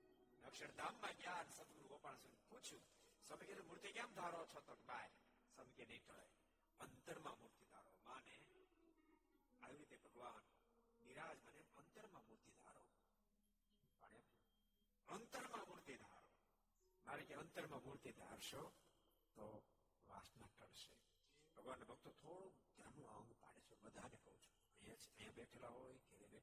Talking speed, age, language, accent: 30 wpm, 60-79, Gujarati, native